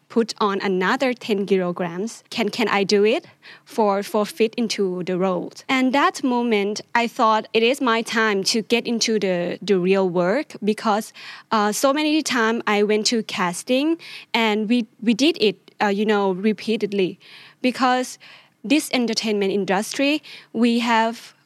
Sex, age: female, 20-39